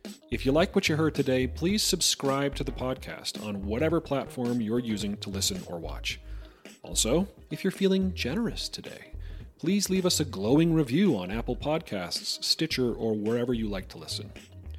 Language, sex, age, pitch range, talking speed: English, male, 30-49, 105-140 Hz, 175 wpm